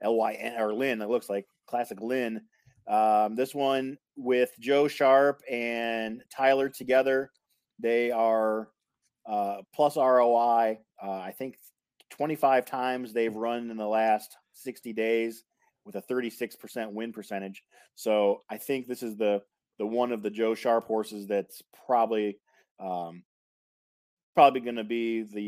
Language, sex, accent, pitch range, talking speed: English, male, American, 110-130 Hz, 145 wpm